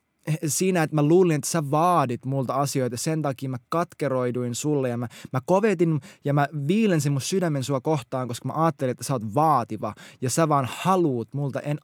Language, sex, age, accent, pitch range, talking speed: Finnish, male, 20-39, native, 130-170 Hz, 200 wpm